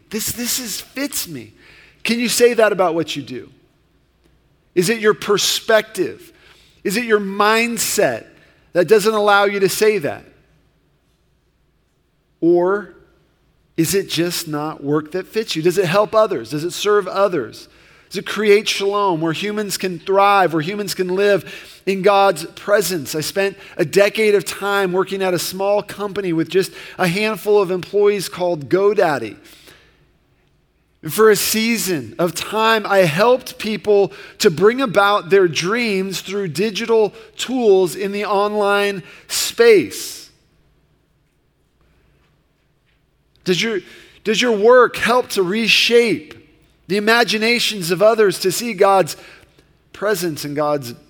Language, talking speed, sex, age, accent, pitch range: English, 135 wpm, male, 40-59, American, 180-215 Hz